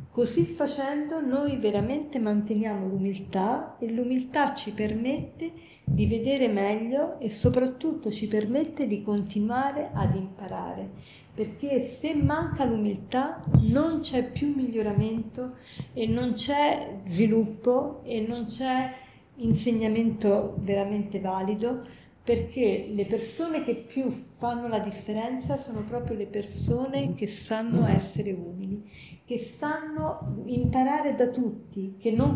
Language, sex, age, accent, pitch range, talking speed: Italian, female, 40-59, native, 210-260 Hz, 115 wpm